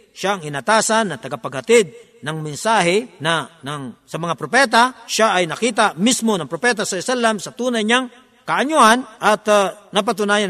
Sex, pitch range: male, 160-215 Hz